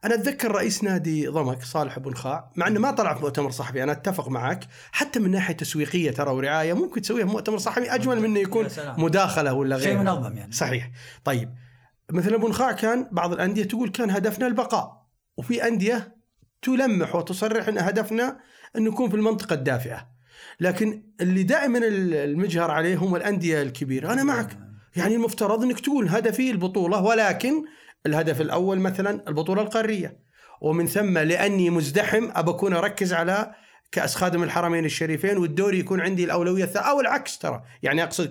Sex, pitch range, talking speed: male, 155-220 Hz, 160 wpm